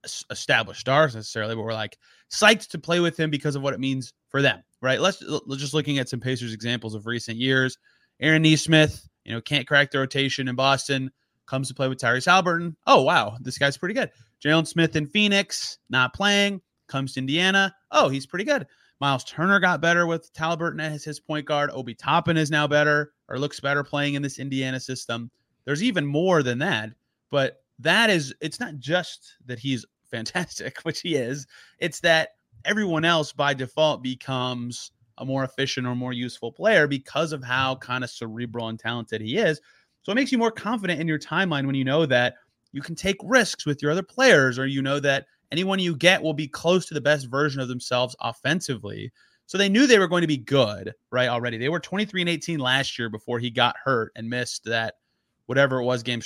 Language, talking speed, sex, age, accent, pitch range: English, 210 wpm, male, 30-49, American, 125-165 Hz